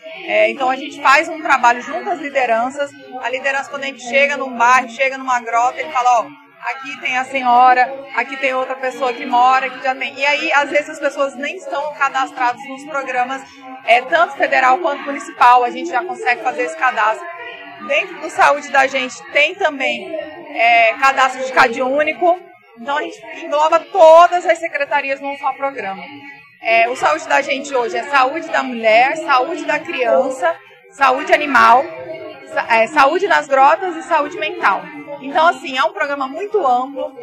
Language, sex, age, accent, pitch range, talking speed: Portuguese, female, 30-49, Brazilian, 255-320 Hz, 165 wpm